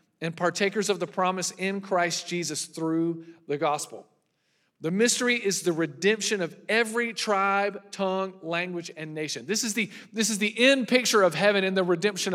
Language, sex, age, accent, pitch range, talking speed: English, male, 40-59, American, 165-215 Hz, 165 wpm